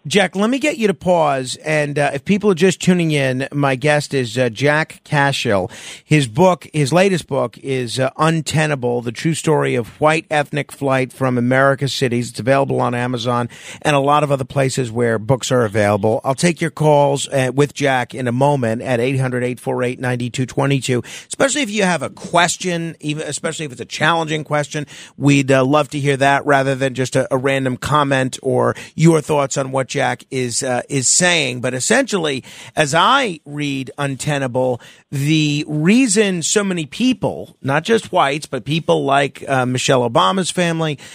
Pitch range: 130-170 Hz